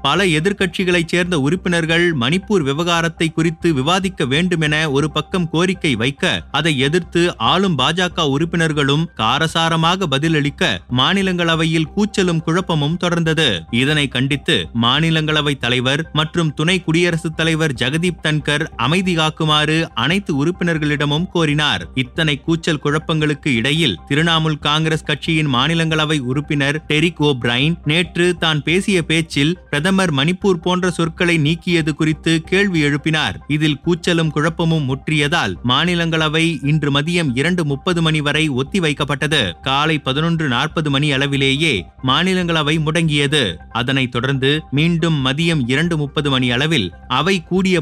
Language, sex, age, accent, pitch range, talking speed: Tamil, male, 30-49, native, 145-175 Hz, 110 wpm